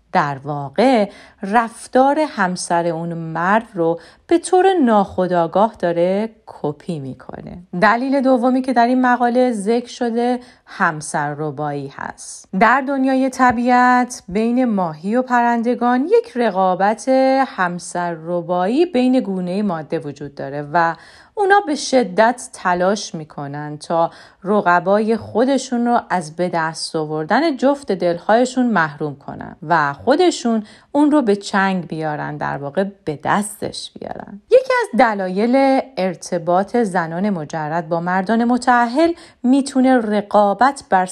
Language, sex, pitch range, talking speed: Persian, female, 170-245 Hz, 120 wpm